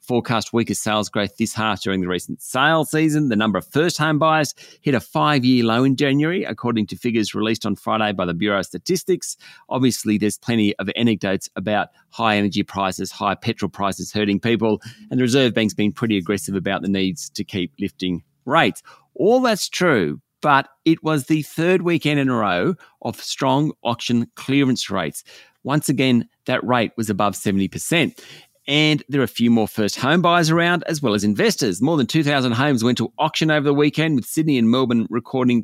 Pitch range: 105-150 Hz